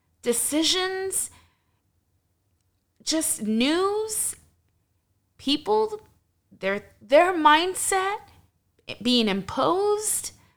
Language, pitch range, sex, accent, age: English, 205-300 Hz, female, American, 20-39